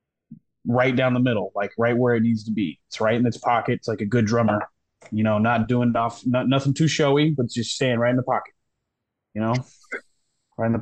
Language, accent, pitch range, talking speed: English, American, 110-145 Hz, 240 wpm